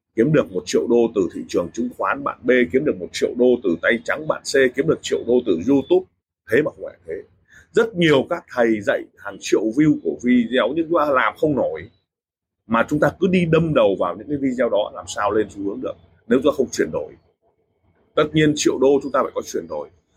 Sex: male